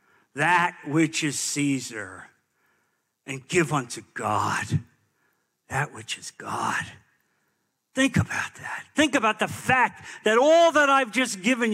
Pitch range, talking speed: 175-235 Hz, 130 wpm